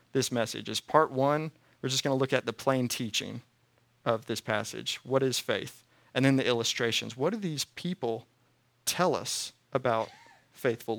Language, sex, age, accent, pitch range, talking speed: English, male, 30-49, American, 115-135 Hz, 175 wpm